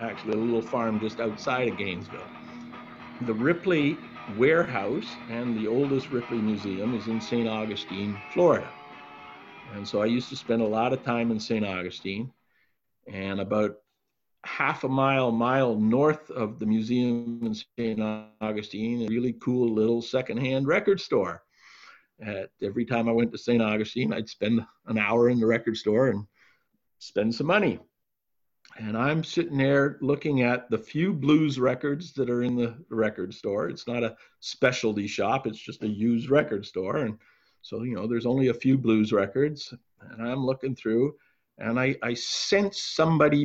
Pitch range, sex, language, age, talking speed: 115-145 Hz, male, English, 50-69, 165 wpm